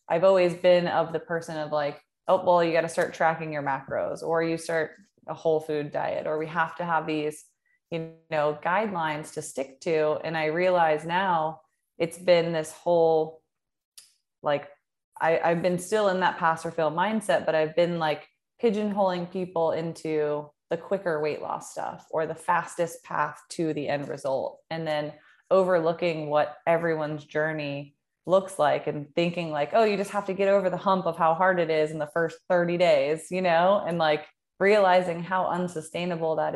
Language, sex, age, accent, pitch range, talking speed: English, female, 20-39, American, 155-175 Hz, 185 wpm